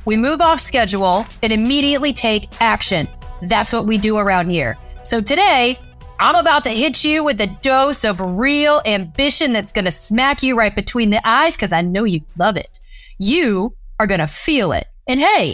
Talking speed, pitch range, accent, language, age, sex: 185 wpm, 195-285 Hz, American, English, 30-49, female